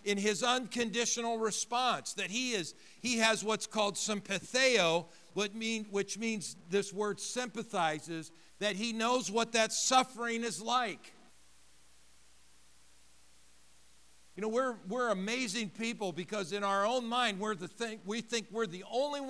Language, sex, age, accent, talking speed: English, male, 50-69, American, 135 wpm